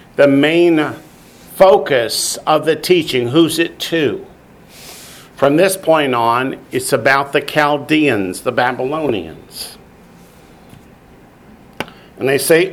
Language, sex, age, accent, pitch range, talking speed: English, male, 50-69, American, 135-180 Hz, 105 wpm